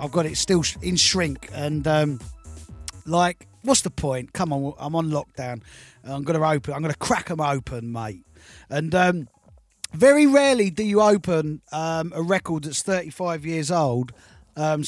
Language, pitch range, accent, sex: English, 135-170 Hz, British, male